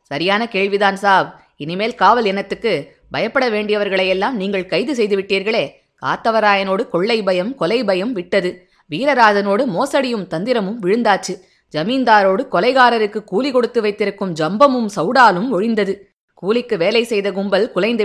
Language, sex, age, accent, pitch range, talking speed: Tamil, female, 20-39, native, 175-230 Hz, 115 wpm